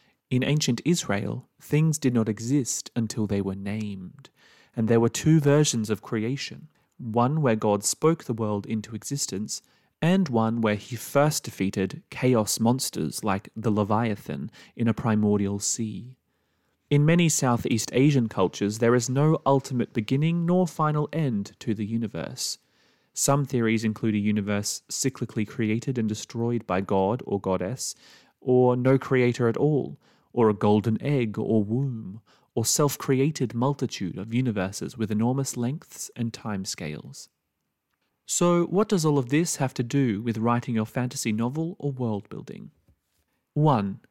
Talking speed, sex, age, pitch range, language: 150 wpm, male, 30-49, 110-140 Hz, English